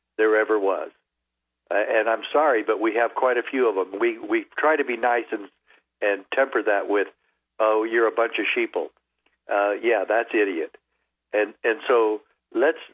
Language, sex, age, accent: English, male, 60-79, American